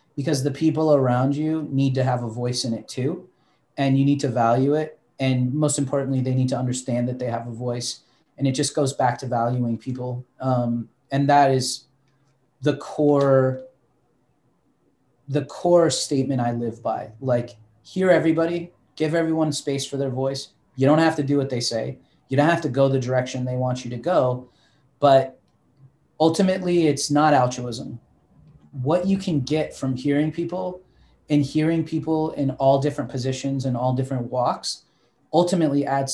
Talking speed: 175 wpm